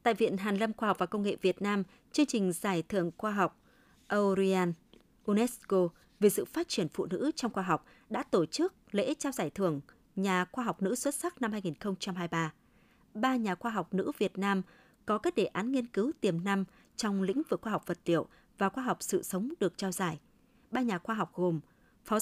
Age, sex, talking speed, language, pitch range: 20-39, female, 215 wpm, Vietnamese, 185-240 Hz